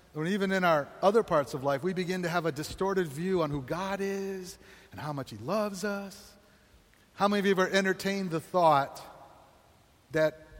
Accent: American